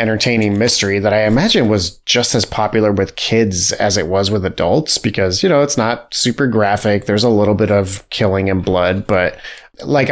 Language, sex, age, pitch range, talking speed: English, male, 30-49, 100-125 Hz, 195 wpm